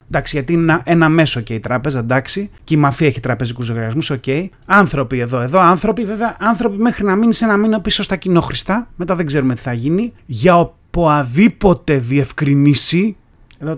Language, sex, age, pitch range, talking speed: Greek, male, 30-49, 140-205 Hz, 175 wpm